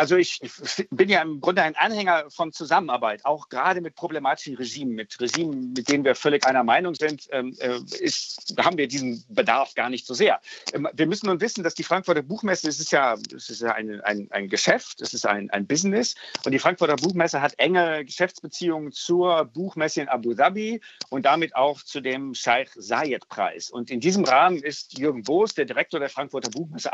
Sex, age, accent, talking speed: male, 50-69, German, 180 wpm